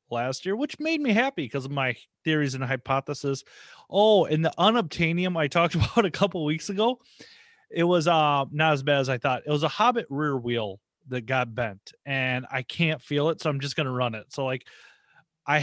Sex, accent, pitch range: male, American, 130-160 Hz